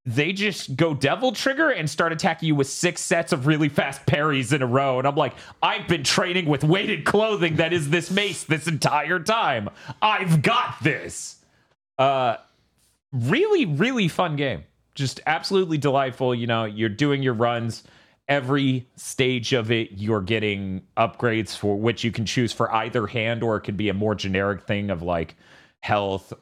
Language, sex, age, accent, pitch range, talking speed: English, male, 30-49, American, 115-165 Hz, 175 wpm